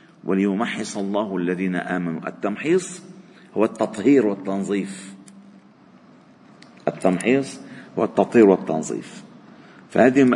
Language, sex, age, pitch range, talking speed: Arabic, male, 50-69, 130-195 Hz, 75 wpm